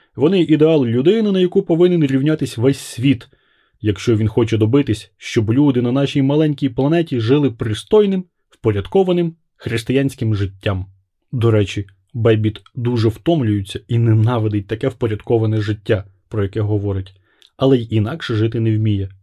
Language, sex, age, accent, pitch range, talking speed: Ukrainian, male, 20-39, native, 110-165 Hz, 135 wpm